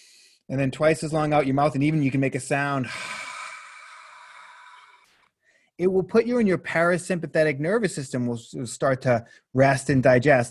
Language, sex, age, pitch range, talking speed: English, male, 30-49, 120-150 Hz, 170 wpm